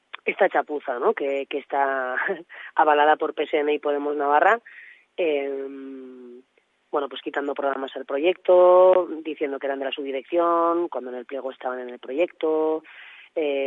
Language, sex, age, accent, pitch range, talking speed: Spanish, female, 20-39, Spanish, 135-155 Hz, 150 wpm